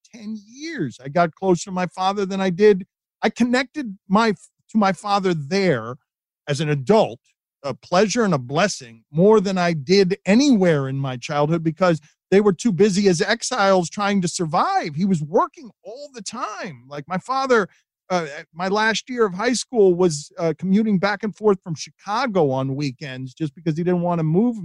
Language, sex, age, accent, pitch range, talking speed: English, male, 40-59, American, 155-210 Hz, 185 wpm